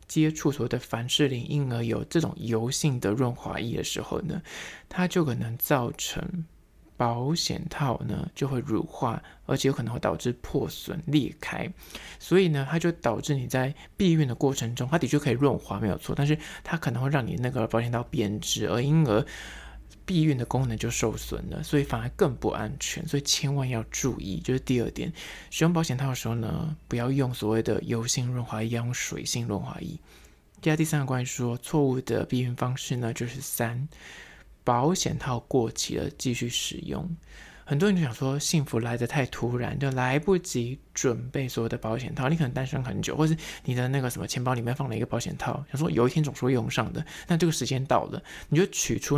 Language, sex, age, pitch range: Chinese, male, 20-39, 120-155 Hz